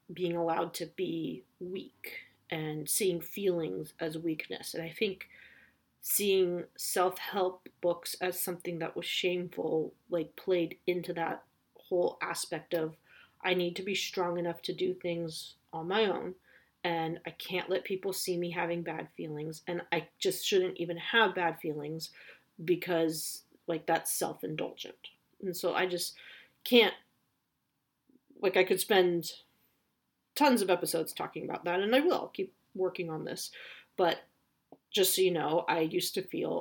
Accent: American